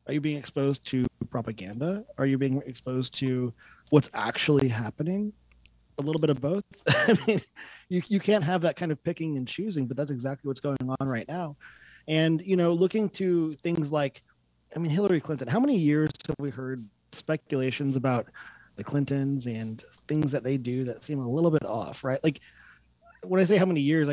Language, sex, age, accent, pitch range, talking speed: English, male, 30-49, American, 130-165 Hz, 195 wpm